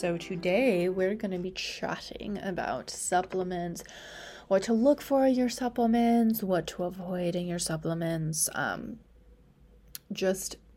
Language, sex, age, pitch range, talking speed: English, female, 20-39, 175-220 Hz, 135 wpm